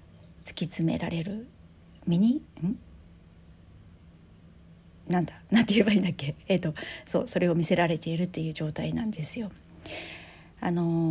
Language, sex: Japanese, female